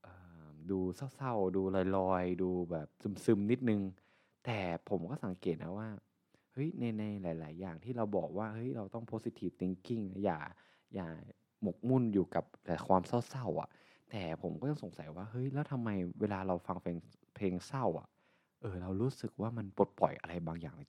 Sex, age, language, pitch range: male, 20-39, Thai, 90-115 Hz